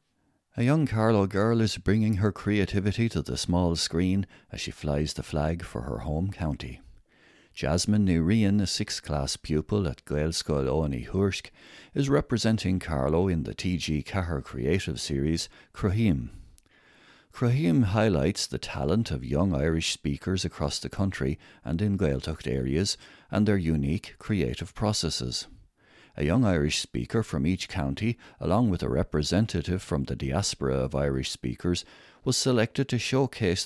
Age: 60-79